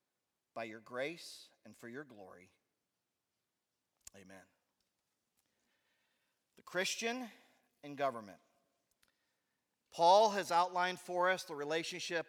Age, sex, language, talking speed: 40-59, male, English, 95 wpm